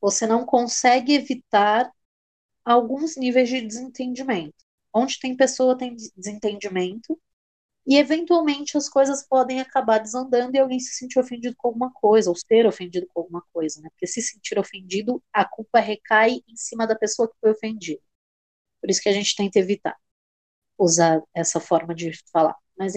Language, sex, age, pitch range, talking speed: Portuguese, female, 20-39, 195-255 Hz, 165 wpm